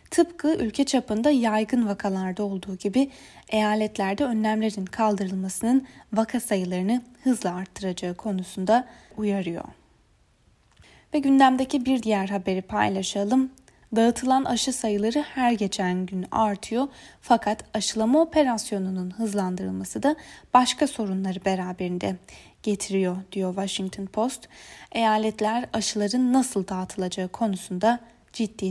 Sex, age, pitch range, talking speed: female, 10-29, 195-250 Hz, 100 wpm